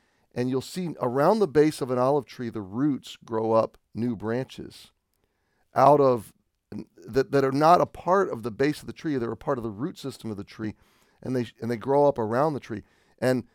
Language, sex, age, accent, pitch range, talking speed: English, male, 40-59, American, 115-140 Hz, 220 wpm